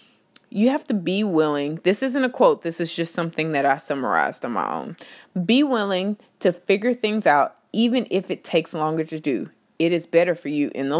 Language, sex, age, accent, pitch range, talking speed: English, female, 30-49, American, 155-215 Hz, 215 wpm